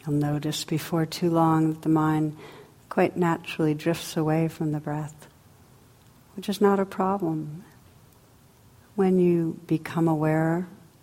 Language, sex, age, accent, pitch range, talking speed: English, female, 60-79, American, 125-165 Hz, 130 wpm